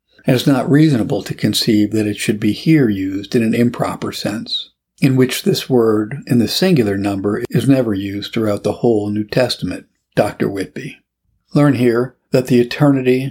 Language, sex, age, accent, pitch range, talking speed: English, male, 60-79, American, 105-130 Hz, 175 wpm